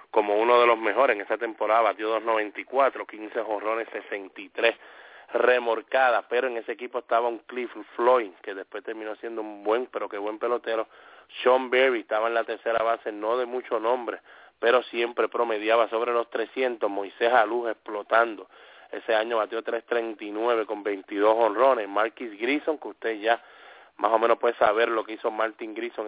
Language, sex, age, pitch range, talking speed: English, male, 30-49, 110-125 Hz, 170 wpm